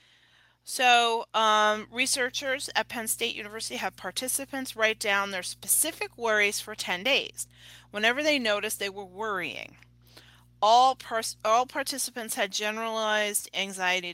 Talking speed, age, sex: 125 wpm, 30-49, female